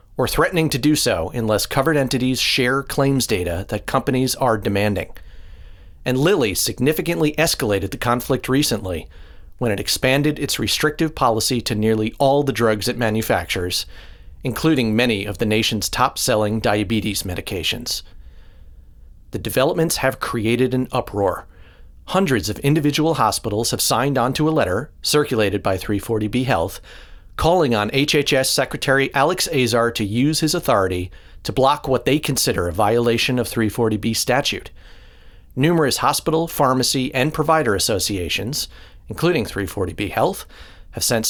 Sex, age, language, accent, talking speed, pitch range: male, 40-59, English, American, 135 wpm, 100-140 Hz